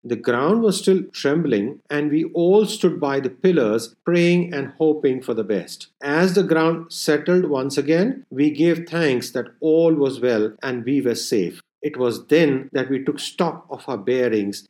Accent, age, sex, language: Indian, 50-69, male, English